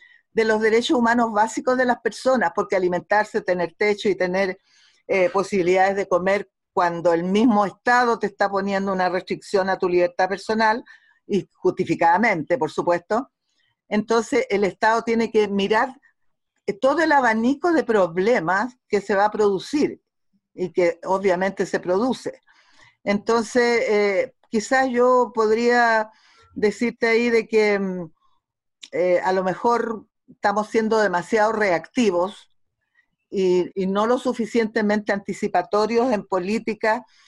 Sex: female